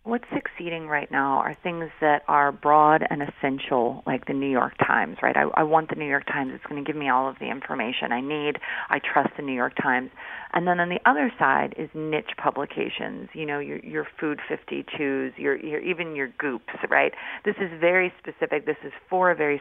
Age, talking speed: 40-59, 215 wpm